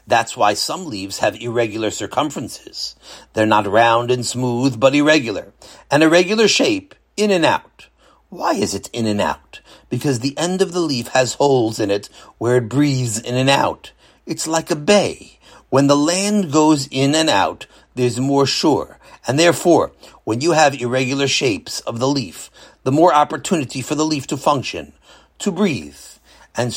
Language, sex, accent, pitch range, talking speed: English, male, American, 125-170 Hz, 175 wpm